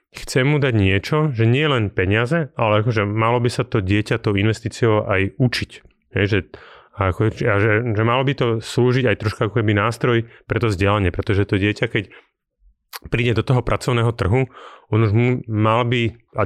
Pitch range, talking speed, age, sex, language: 100-120 Hz, 190 wpm, 30-49, male, Slovak